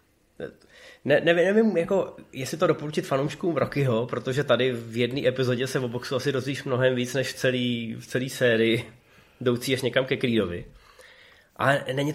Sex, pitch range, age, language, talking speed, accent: male, 115-135 Hz, 20-39, Czech, 160 wpm, native